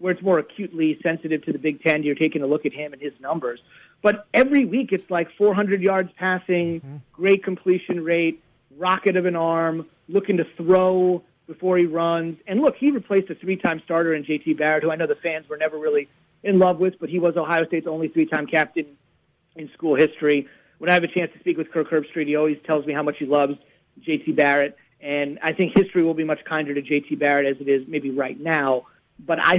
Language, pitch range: English, 155-195 Hz